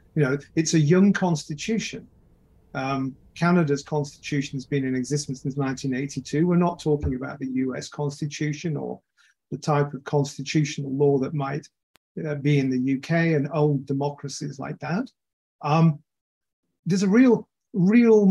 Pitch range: 135-160 Hz